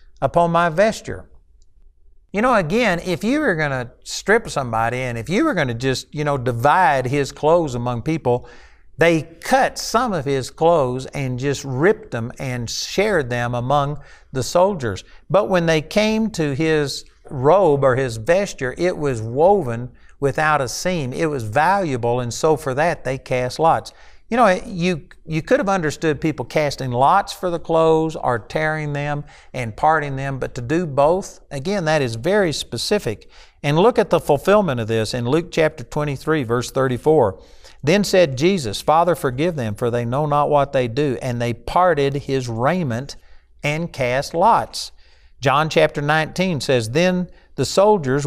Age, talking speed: 60-79, 170 wpm